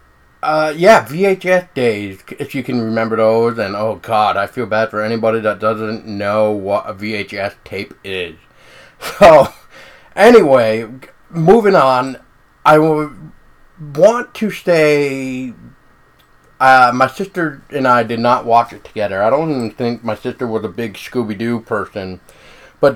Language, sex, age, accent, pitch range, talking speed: English, male, 30-49, American, 110-135 Hz, 145 wpm